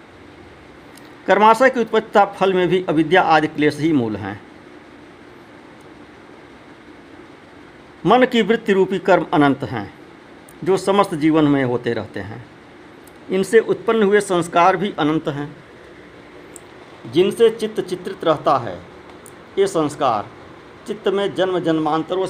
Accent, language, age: native, Hindi, 50-69